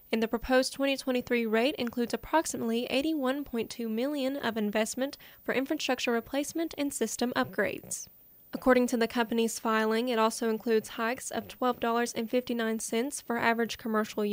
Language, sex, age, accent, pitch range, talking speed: English, female, 10-29, American, 225-255 Hz, 130 wpm